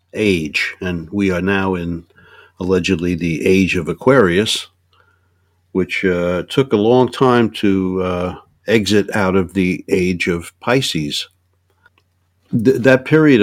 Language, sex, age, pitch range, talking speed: English, male, 60-79, 90-100 Hz, 130 wpm